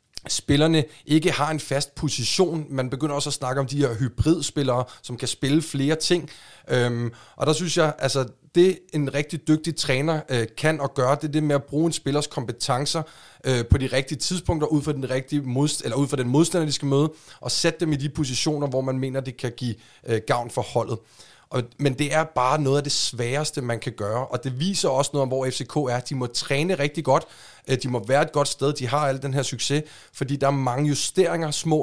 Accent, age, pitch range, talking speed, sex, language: native, 30-49, 125-150 Hz, 210 wpm, male, Danish